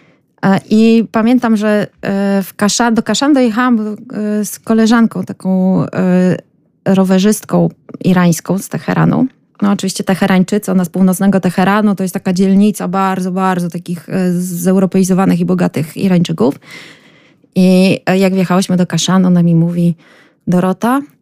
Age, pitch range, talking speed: 20-39, 180-215 Hz, 120 wpm